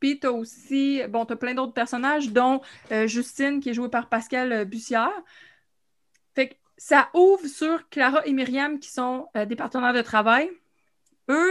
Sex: female